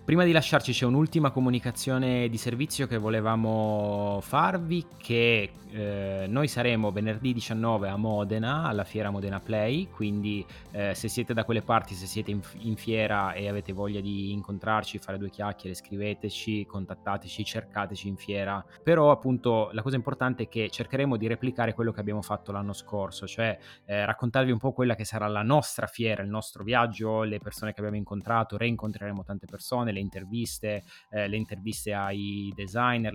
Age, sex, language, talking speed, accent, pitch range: 20-39, male, Italian, 170 wpm, native, 100-120 Hz